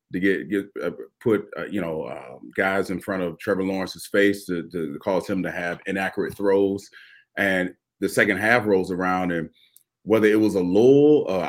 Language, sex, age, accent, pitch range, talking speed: English, male, 30-49, American, 95-120 Hz, 195 wpm